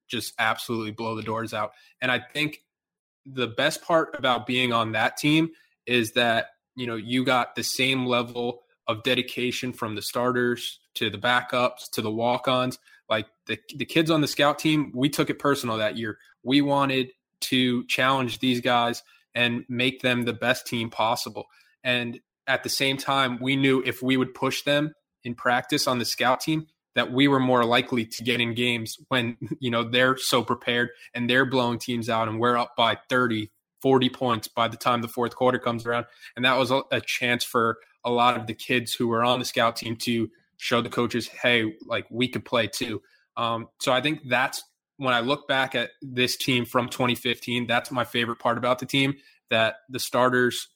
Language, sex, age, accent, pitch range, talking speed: English, male, 20-39, American, 120-130 Hz, 200 wpm